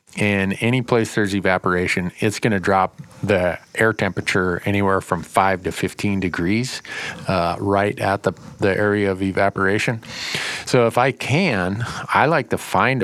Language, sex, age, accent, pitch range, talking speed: English, male, 40-59, American, 95-115 Hz, 155 wpm